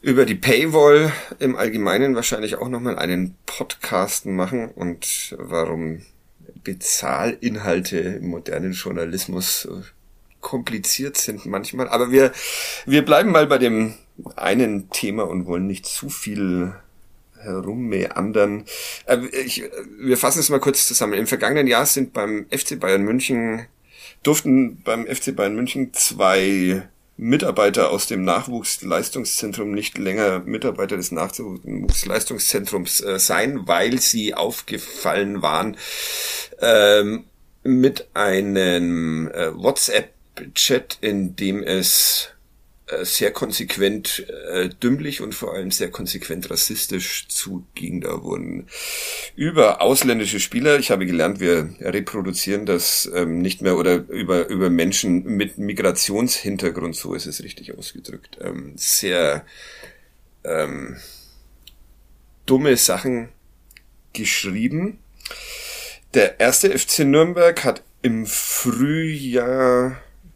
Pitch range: 95-135 Hz